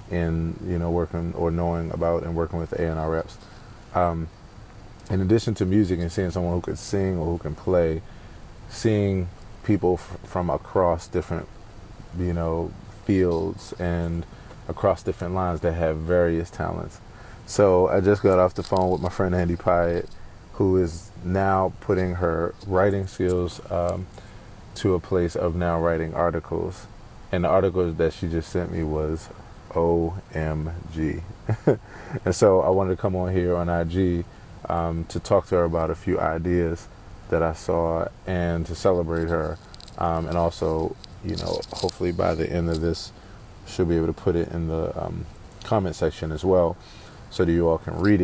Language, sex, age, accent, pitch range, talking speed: English, male, 30-49, American, 85-95 Hz, 175 wpm